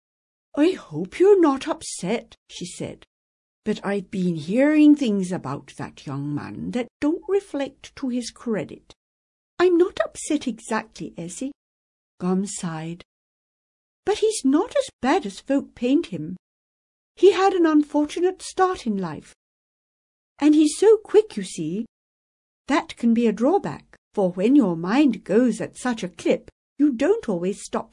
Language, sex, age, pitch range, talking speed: English, female, 60-79, 180-275 Hz, 150 wpm